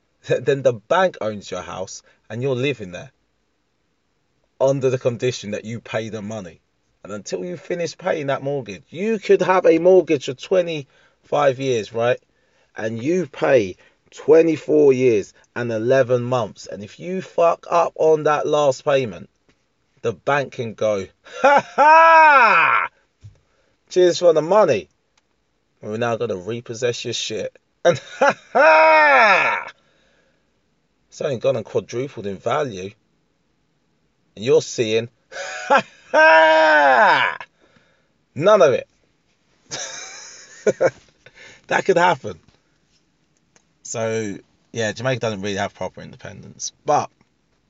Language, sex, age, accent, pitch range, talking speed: English, male, 30-49, British, 105-175 Hz, 120 wpm